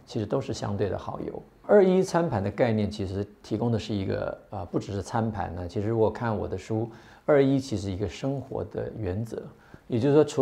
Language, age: Chinese, 50-69